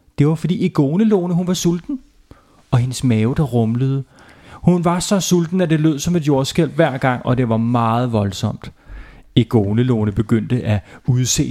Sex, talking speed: male, 170 wpm